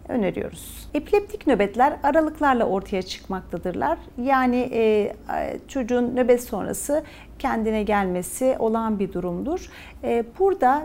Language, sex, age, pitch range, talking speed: Turkish, female, 40-59, 215-265 Hz, 95 wpm